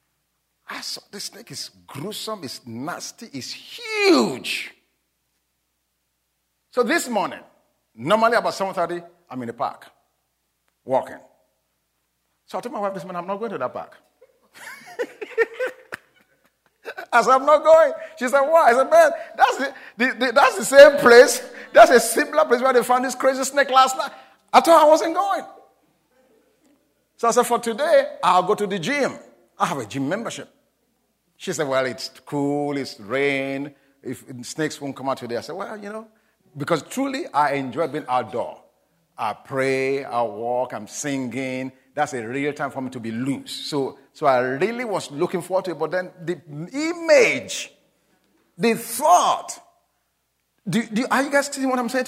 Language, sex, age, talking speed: English, male, 50-69, 170 wpm